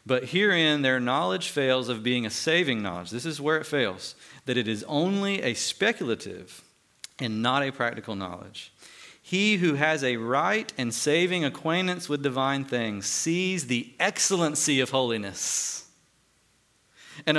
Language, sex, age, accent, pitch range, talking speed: English, male, 40-59, American, 105-150 Hz, 150 wpm